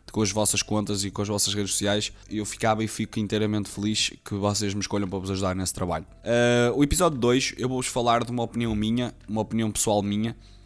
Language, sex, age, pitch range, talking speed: Portuguese, male, 20-39, 100-115 Hz, 220 wpm